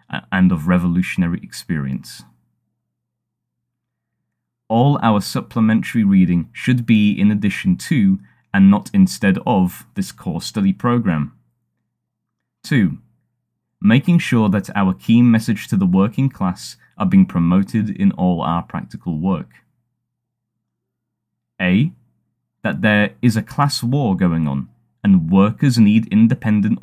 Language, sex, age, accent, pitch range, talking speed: English, male, 20-39, British, 95-140 Hz, 120 wpm